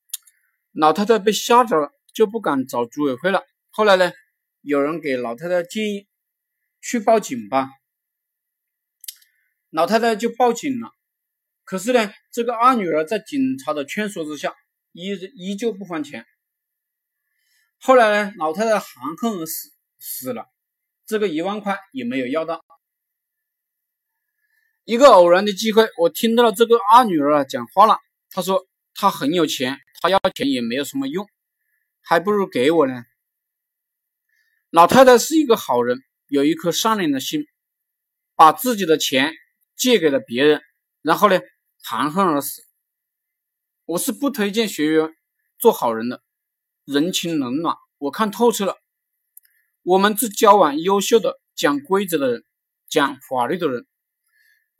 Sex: male